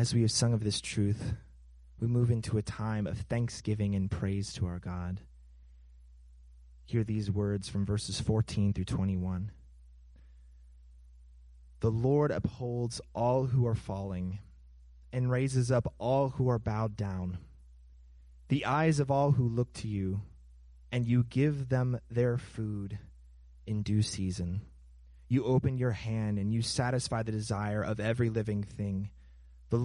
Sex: male